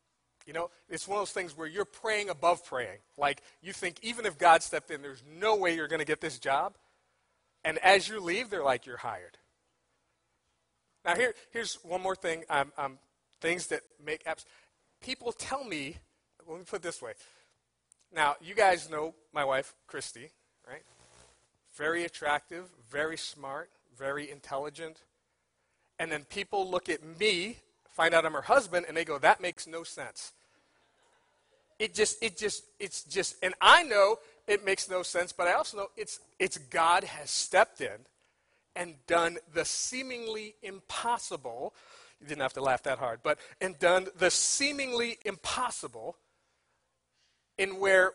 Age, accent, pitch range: 40-59, American, 160-215 Hz